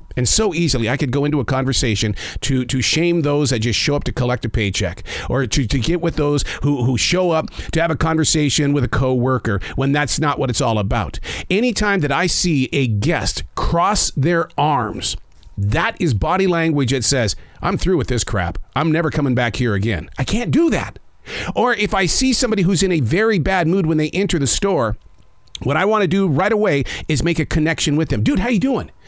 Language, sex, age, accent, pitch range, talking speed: English, male, 50-69, American, 125-185 Hz, 225 wpm